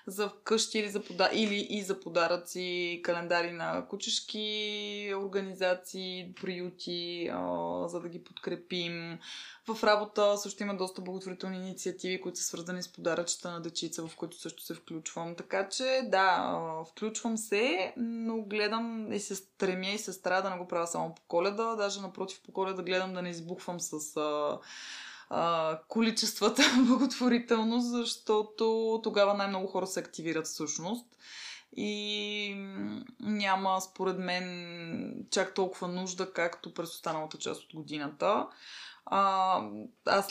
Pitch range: 175-215 Hz